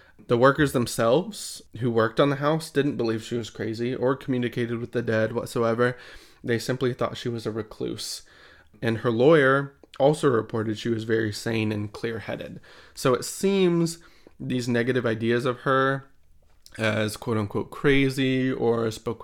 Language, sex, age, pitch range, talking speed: English, male, 20-39, 115-140 Hz, 155 wpm